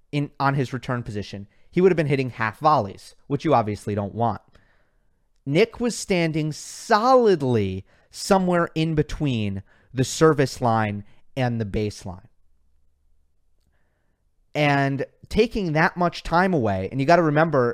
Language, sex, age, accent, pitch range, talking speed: English, male, 30-49, American, 115-155 Hz, 140 wpm